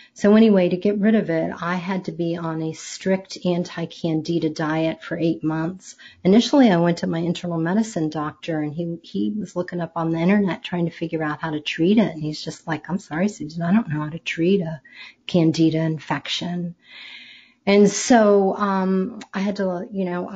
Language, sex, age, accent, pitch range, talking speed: English, female, 30-49, American, 165-200 Hz, 200 wpm